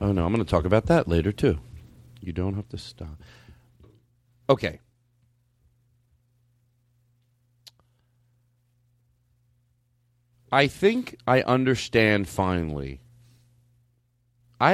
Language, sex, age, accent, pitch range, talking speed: English, male, 40-59, American, 110-145 Hz, 90 wpm